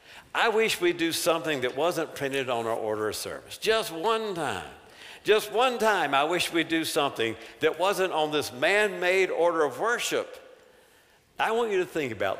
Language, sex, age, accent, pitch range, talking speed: English, male, 60-79, American, 140-185 Hz, 185 wpm